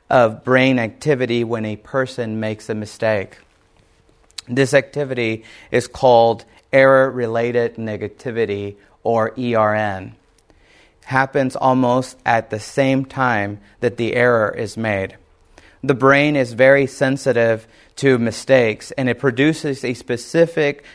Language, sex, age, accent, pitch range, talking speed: English, male, 30-49, American, 110-135 Hz, 115 wpm